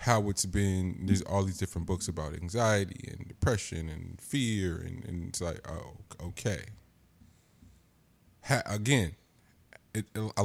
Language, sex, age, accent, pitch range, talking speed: English, male, 20-39, American, 90-110 Hz, 140 wpm